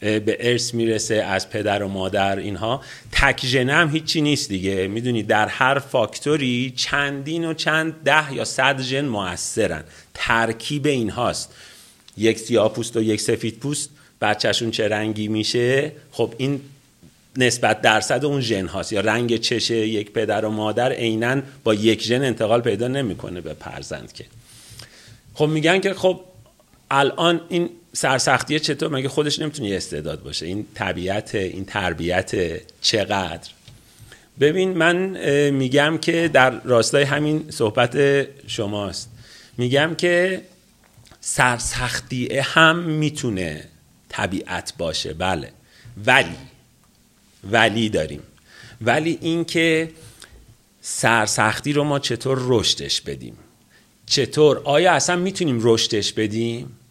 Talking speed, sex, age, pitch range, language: 120 wpm, male, 40-59, 110-145 Hz, Persian